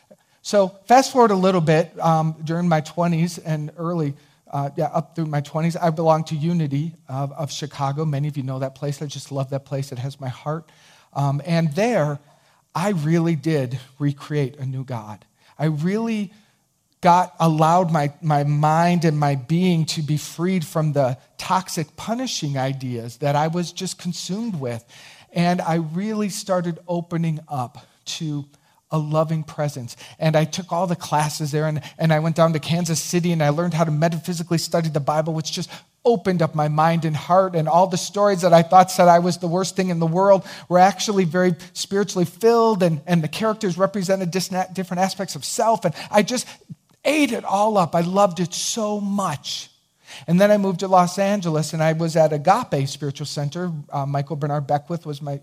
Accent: American